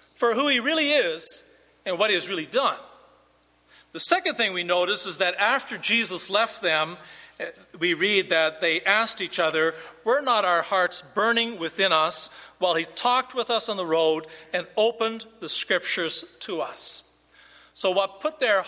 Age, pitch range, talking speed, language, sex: 40-59, 170-240 Hz, 175 wpm, English, male